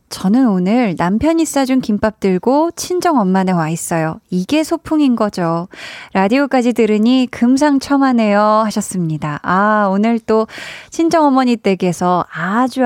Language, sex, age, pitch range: Korean, female, 20-39, 190-255 Hz